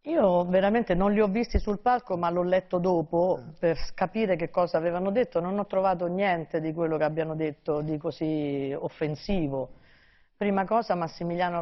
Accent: native